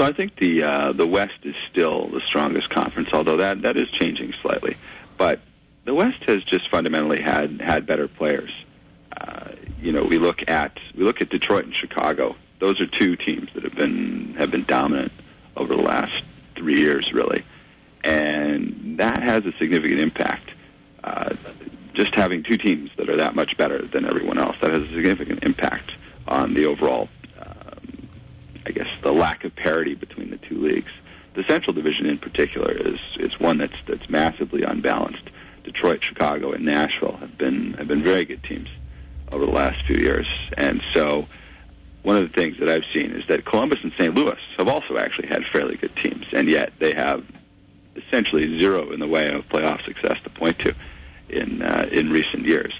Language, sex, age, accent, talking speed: English, male, 40-59, American, 185 wpm